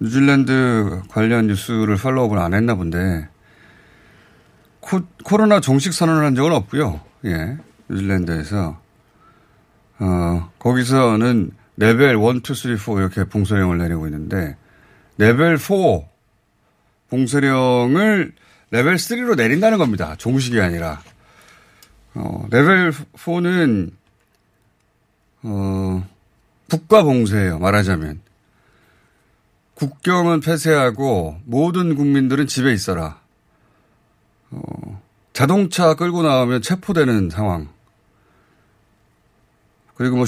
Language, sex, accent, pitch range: Korean, male, native, 95-145 Hz